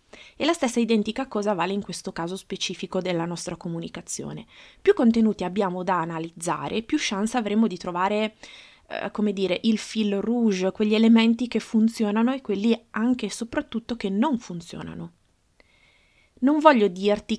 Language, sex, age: Italian, female, 20-39